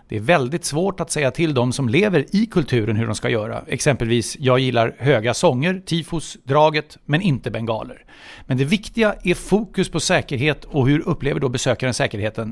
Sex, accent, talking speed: male, Swedish, 185 wpm